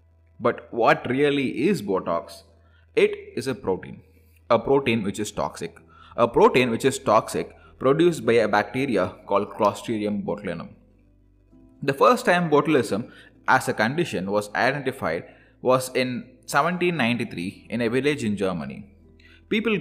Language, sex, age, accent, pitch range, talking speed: English, male, 20-39, Indian, 100-150 Hz, 135 wpm